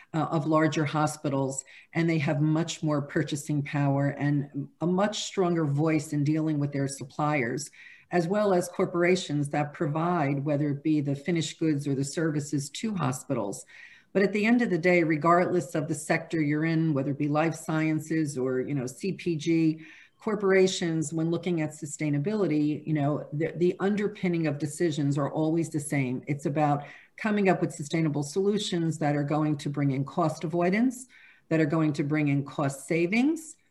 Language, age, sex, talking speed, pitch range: English, 50-69, female, 175 wpm, 150-180 Hz